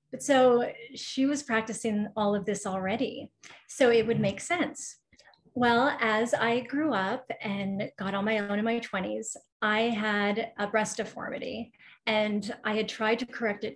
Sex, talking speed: female, 170 wpm